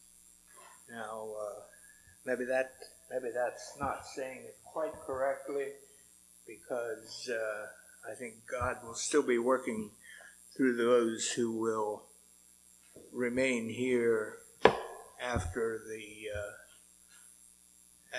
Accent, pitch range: American, 110-160 Hz